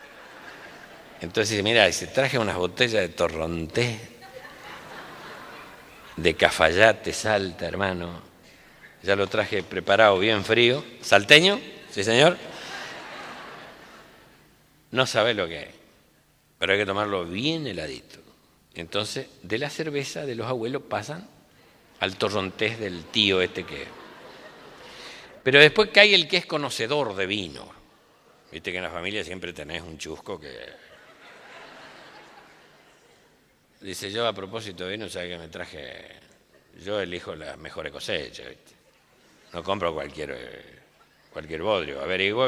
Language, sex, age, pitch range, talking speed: Spanish, male, 50-69, 90-140 Hz, 125 wpm